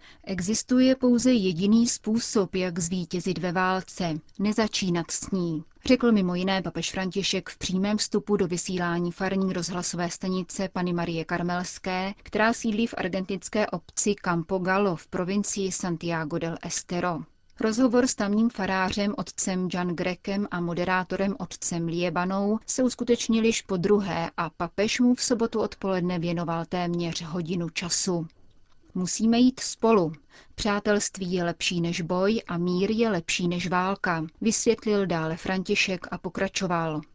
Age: 30-49